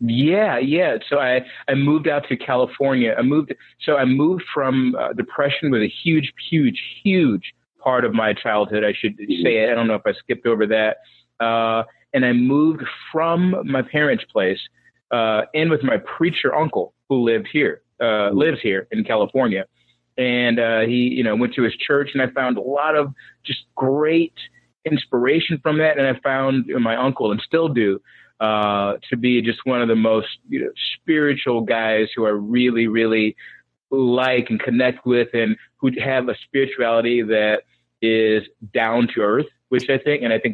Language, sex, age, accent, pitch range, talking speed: English, male, 30-49, American, 110-140 Hz, 180 wpm